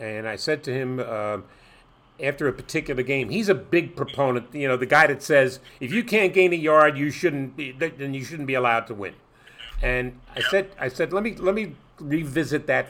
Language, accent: English, American